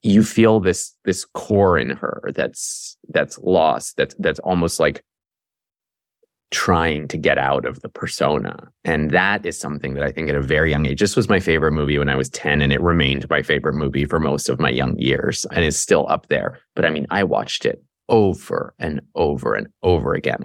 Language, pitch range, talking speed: English, 75-100 Hz, 210 wpm